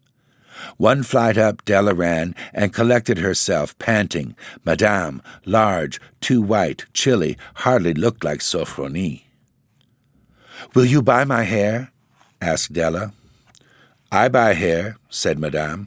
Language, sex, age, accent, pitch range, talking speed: English, male, 60-79, American, 80-115 Hz, 115 wpm